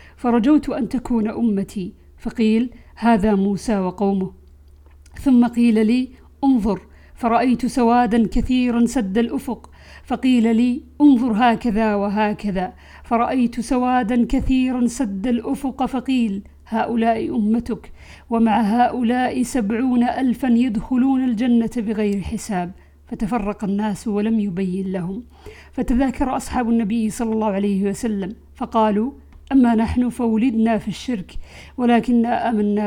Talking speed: 105 wpm